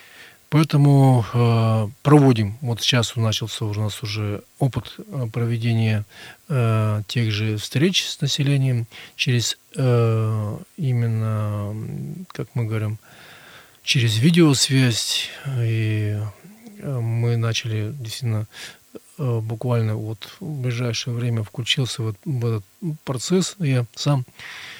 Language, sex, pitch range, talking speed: Russian, male, 115-135 Hz, 90 wpm